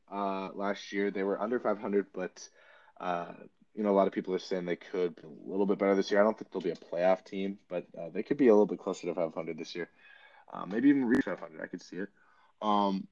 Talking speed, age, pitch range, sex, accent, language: 260 wpm, 20-39, 95-125 Hz, male, American, English